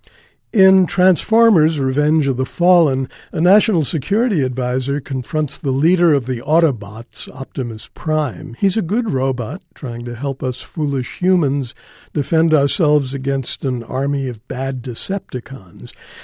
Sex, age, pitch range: male, 60-79, 130-170 Hz